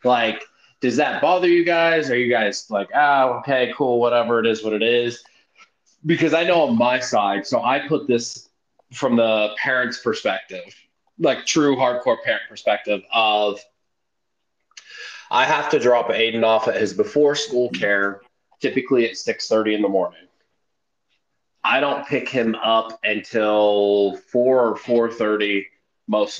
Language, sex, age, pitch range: English, male, 20-39, 105-120 Hz